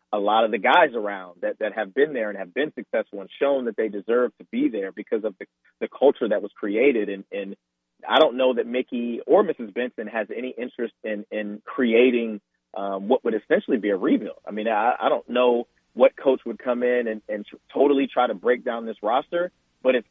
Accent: American